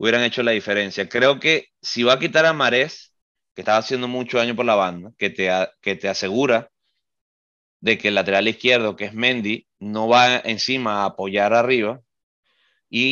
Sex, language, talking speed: male, Spanish, 185 wpm